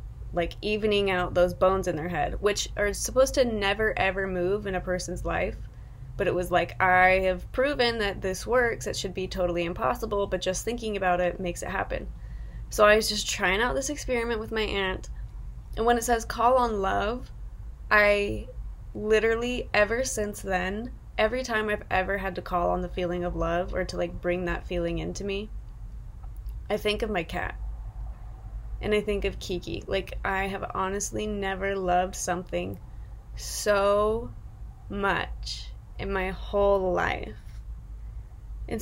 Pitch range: 175-210 Hz